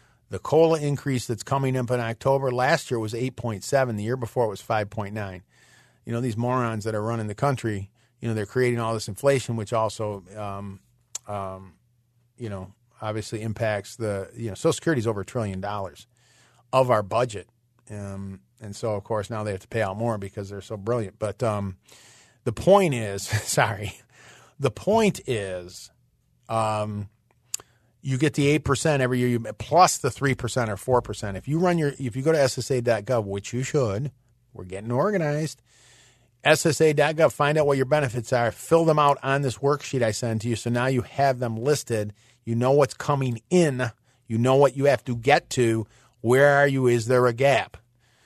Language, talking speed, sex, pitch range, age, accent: English, 190 wpm, male, 110-135 Hz, 40-59, American